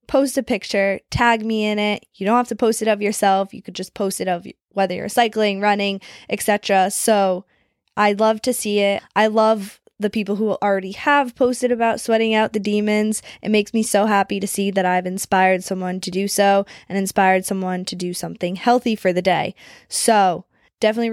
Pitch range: 190-225 Hz